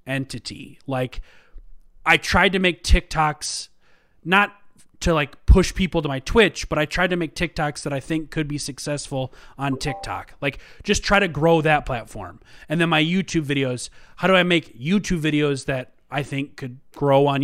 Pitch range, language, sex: 135-170 Hz, English, male